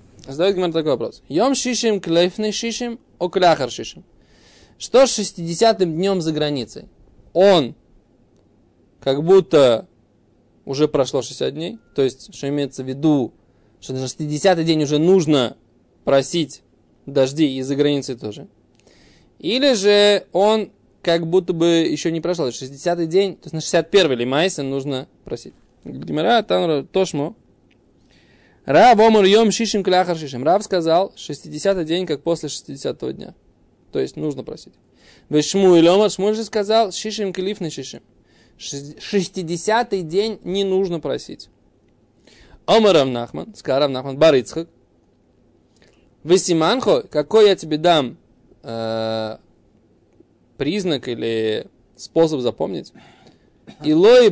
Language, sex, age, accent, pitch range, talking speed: Russian, male, 20-39, native, 140-195 Hz, 110 wpm